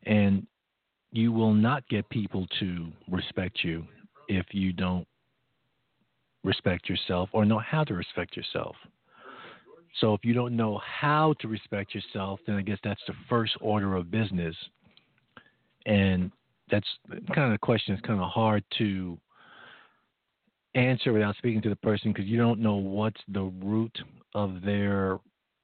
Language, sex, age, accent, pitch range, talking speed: English, male, 50-69, American, 95-115 Hz, 150 wpm